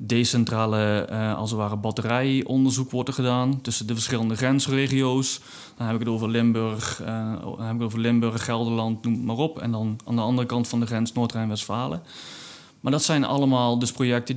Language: Dutch